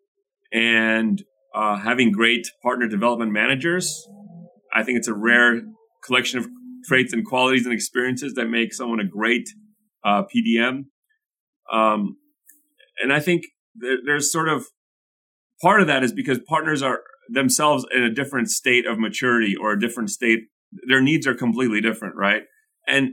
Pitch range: 115-150 Hz